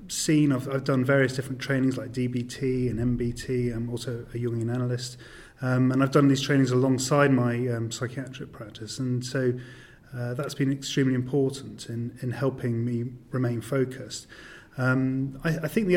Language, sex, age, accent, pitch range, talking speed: English, male, 30-49, British, 125-140 Hz, 170 wpm